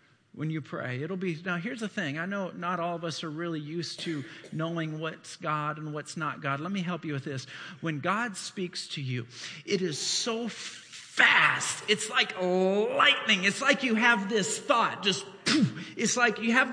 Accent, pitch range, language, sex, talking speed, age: American, 190-270 Hz, English, male, 200 wpm, 40-59